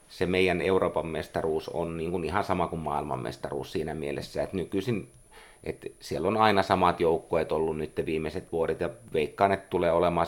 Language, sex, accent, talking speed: Finnish, male, native, 175 wpm